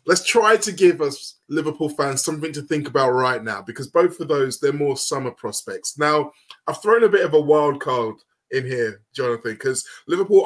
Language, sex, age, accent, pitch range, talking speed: English, male, 20-39, British, 135-185 Hz, 200 wpm